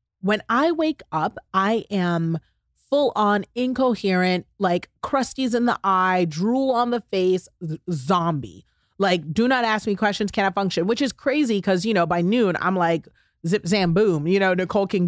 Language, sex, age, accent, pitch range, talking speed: English, female, 30-49, American, 175-220 Hz, 175 wpm